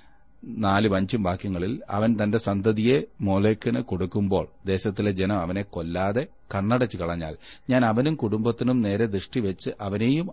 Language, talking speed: Malayalam, 115 wpm